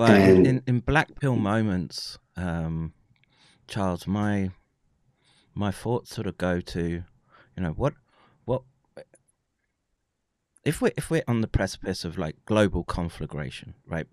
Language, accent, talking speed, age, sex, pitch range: English, British, 130 wpm, 30-49, male, 90-120 Hz